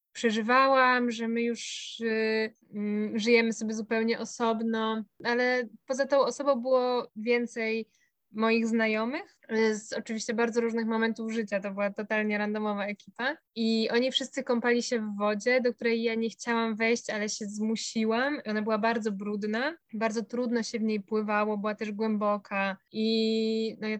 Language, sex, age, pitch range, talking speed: Polish, female, 20-39, 220-245 Hz, 150 wpm